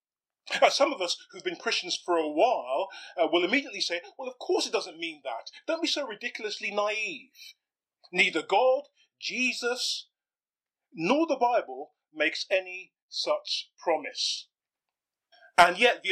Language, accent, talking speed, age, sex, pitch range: English, British, 145 wpm, 30-49, male, 175-285 Hz